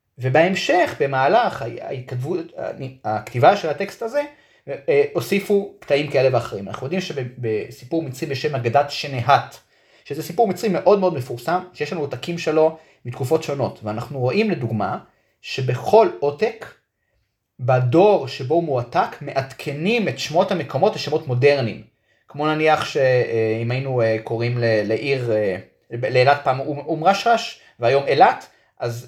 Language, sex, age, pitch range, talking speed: Hebrew, male, 30-49, 120-170 Hz, 115 wpm